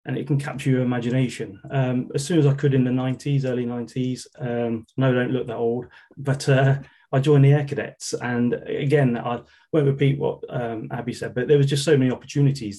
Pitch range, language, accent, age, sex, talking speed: 115-140 Hz, English, British, 30-49, male, 220 wpm